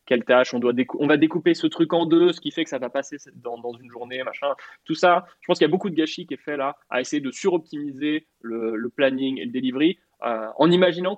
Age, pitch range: 20-39, 135-185 Hz